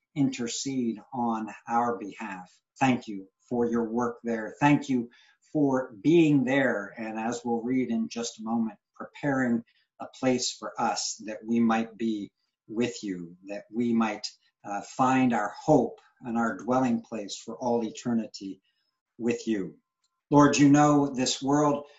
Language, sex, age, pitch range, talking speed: English, male, 60-79, 115-135 Hz, 150 wpm